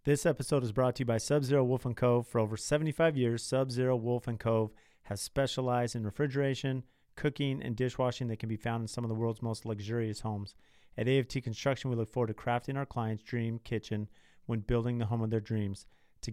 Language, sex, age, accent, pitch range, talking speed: English, male, 30-49, American, 110-130 Hz, 205 wpm